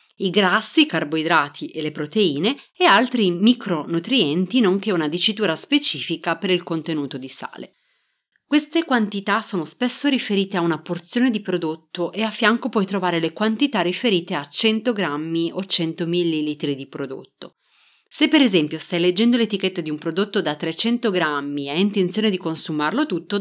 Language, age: Italian, 30-49